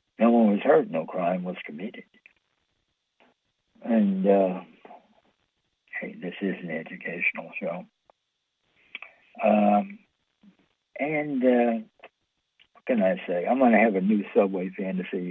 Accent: American